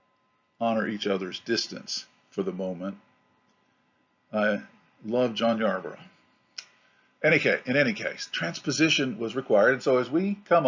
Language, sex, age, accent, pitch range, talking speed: English, male, 50-69, American, 100-140 Hz, 140 wpm